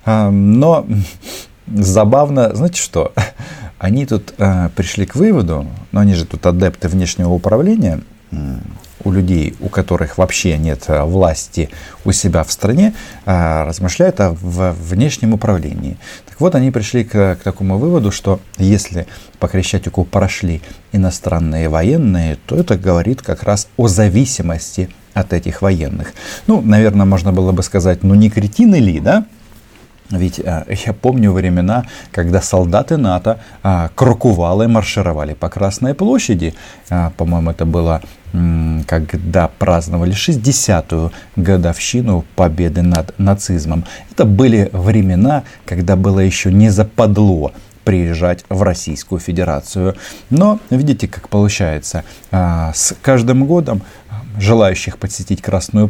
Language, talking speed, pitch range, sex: Russian, 125 wpm, 90-110 Hz, male